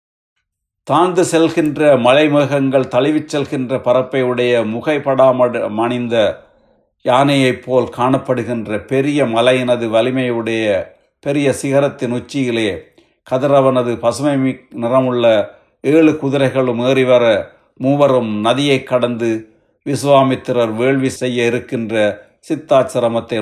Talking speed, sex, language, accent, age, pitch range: 75 wpm, male, Tamil, native, 60-79, 120-140 Hz